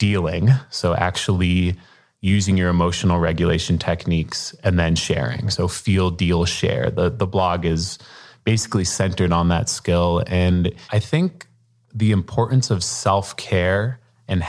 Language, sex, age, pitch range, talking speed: English, male, 20-39, 90-110 Hz, 135 wpm